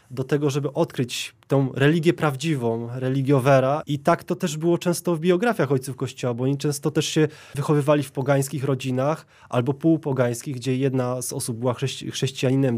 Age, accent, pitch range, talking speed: 20-39, native, 130-165 Hz, 165 wpm